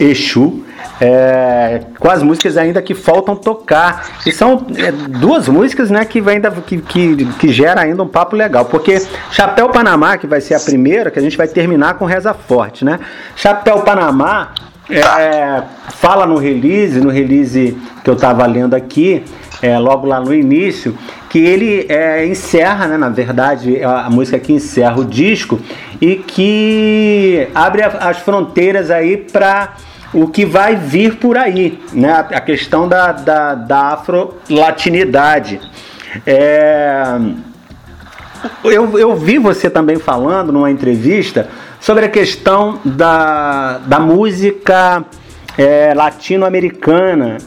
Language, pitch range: Portuguese, 140-195 Hz